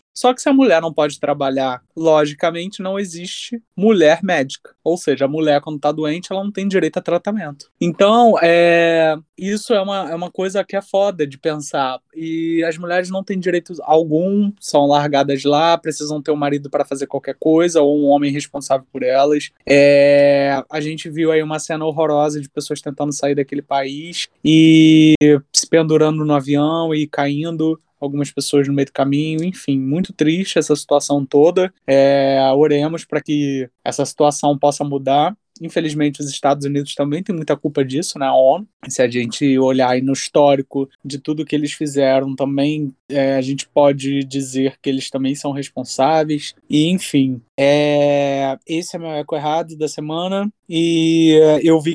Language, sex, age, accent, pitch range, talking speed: Portuguese, male, 20-39, Brazilian, 140-165 Hz, 170 wpm